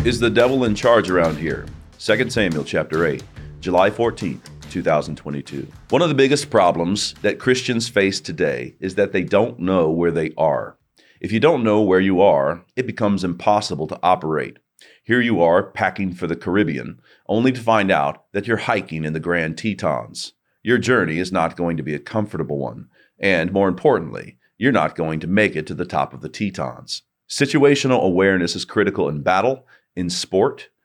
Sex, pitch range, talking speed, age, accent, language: male, 85-115 Hz, 185 wpm, 40-59, American, English